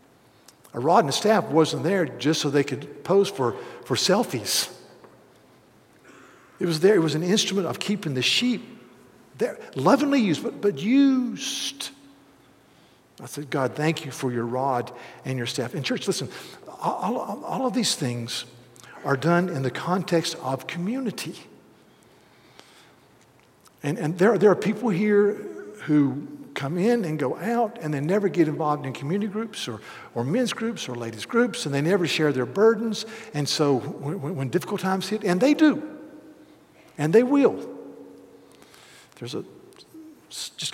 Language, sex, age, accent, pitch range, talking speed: English, male, 50-69, American, 145-220 Hz, 160 wpm